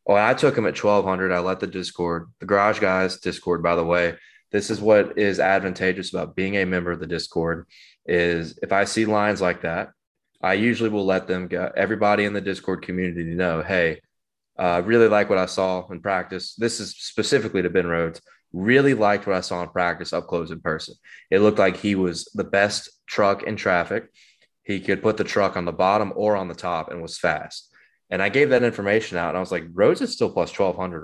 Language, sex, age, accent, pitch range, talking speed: English, male, 20-39, American, 90-105 Hz, 220 wpm